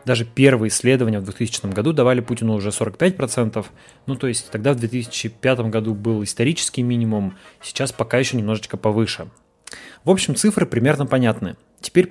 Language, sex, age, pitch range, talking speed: Russian, male, 20-39, 110-140 Hz, 155 wpm